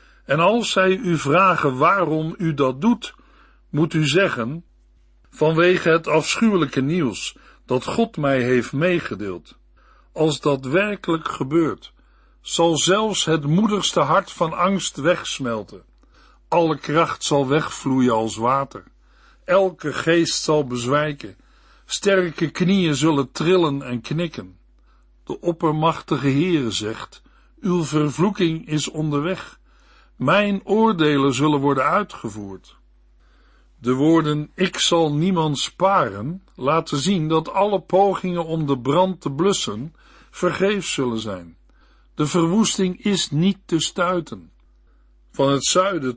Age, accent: 60-79, Dutch